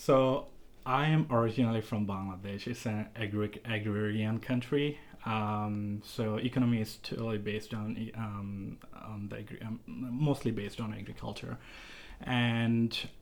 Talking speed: 125 wpm